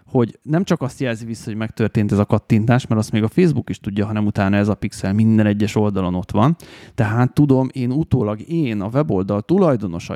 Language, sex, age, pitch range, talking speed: Hungarian, male, 30-49, 105-135 Hz, 215 wpm